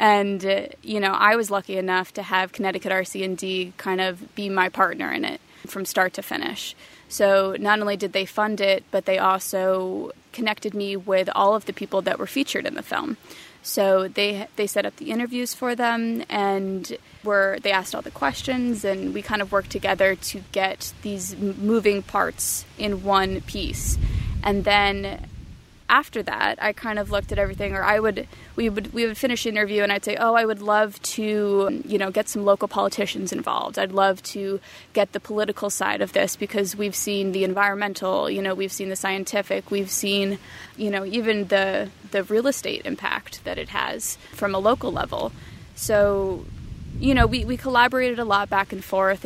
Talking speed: 190 wpm